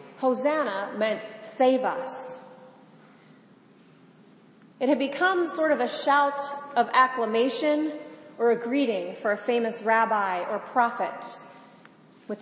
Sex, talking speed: female, 110 wpm